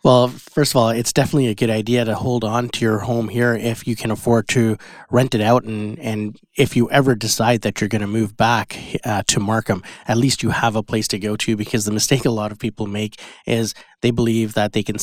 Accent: American